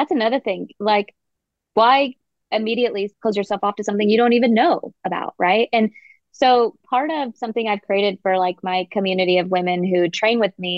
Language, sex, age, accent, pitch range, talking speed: English, female, 20-39, American, 180-225 Hz, 190 wpm